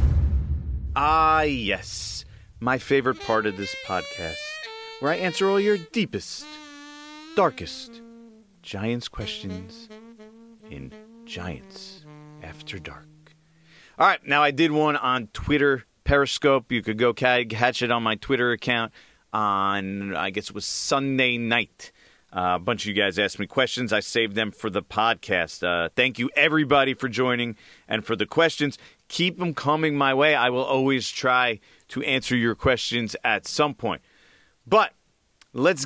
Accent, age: American, 40-59